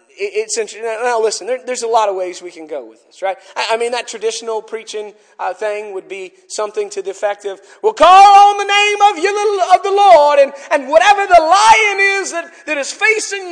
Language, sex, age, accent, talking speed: English, male, 40-59, American, 215 wpm